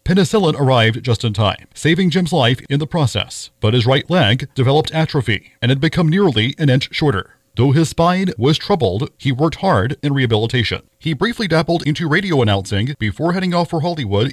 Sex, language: male, English